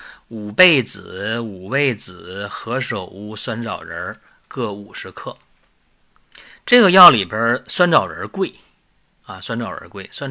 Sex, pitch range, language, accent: male, 105-145 Hz, Chinese, native